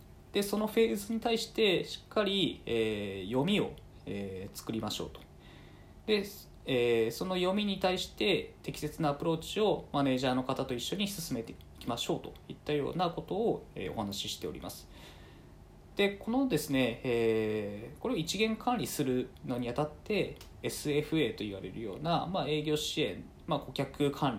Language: Japanese